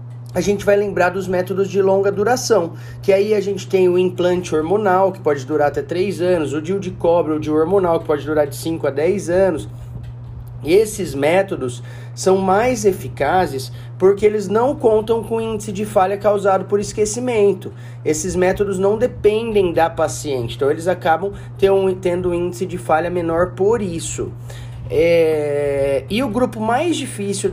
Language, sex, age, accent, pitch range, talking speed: Portuguese, male, 30-49, Brazilian, 150-210 Hz, 165 wpm